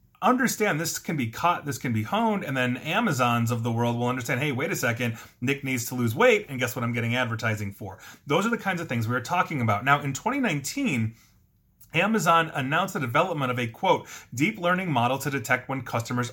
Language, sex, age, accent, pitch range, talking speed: English, male, 30-49, American, 115-155 Hz, 220 wpm